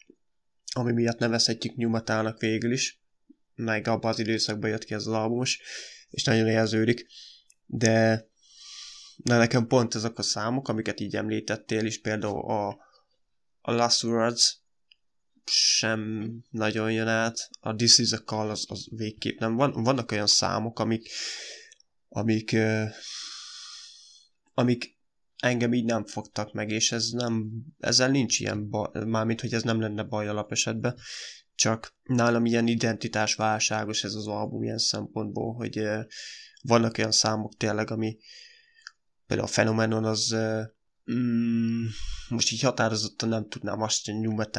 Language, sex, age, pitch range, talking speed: Hungarian, male, 20-39, 110-115 Hz, 140 wpm